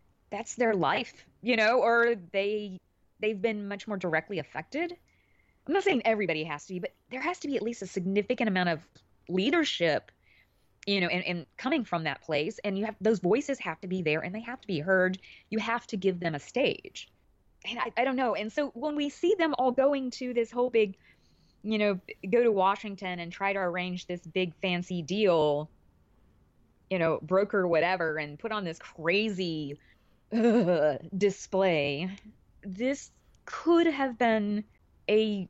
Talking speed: 185 wpm